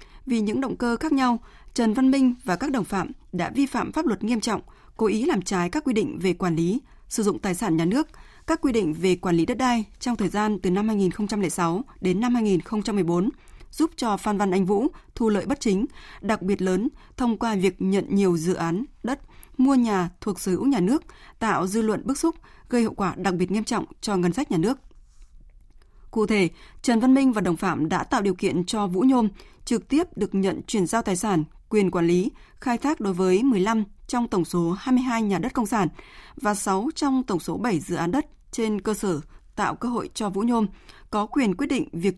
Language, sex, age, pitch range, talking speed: Vietnamese, female, 20-39, 185-245 Hz, 230 wpm